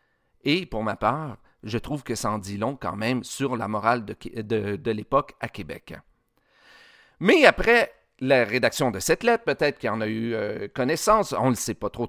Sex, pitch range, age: male, 115-160 Hz, 40-59